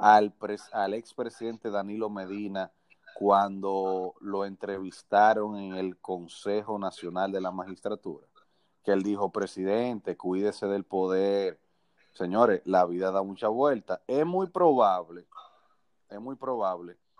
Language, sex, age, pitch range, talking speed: Spanish, male, 30-49, 95-120 Hz, 120 wpm